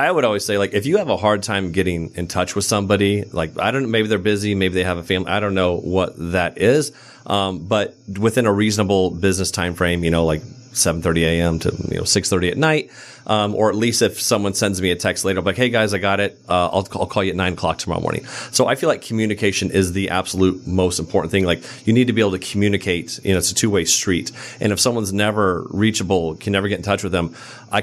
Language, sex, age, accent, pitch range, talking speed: English, male, 30-49, American, 90-105 Hz, 260 wpm